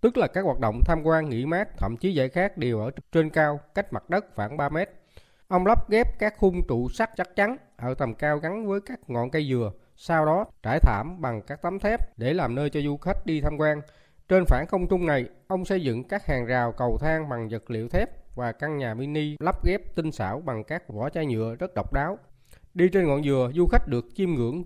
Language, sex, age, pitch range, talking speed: Vietnamese, male, 20-39, 125-180 Hz, 240 wpm